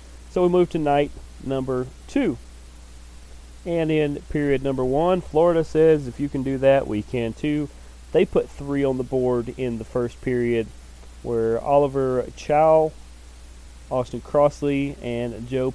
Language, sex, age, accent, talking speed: English, male, 30-49, American, 150 wpm